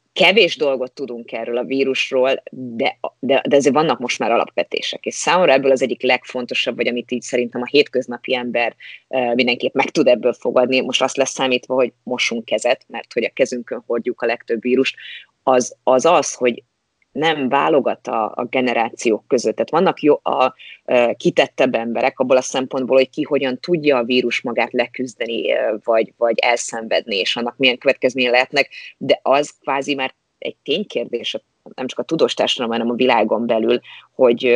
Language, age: Hungarian, 30-49